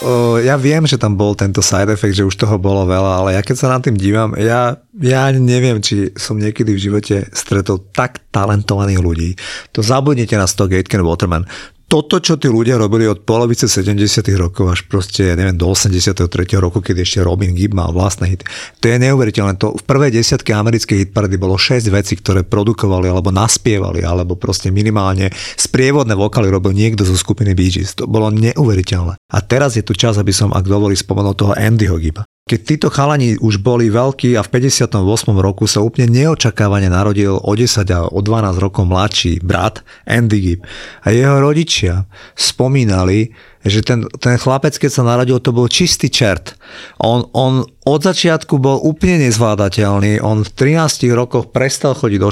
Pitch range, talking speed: 100-125 Hz, 180 wpm